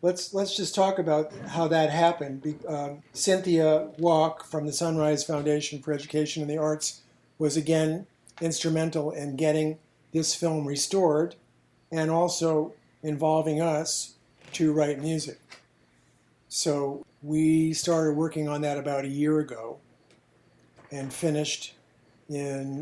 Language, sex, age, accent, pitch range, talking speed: English, male, 50-69, American, 135-155 Hz, 125 wpm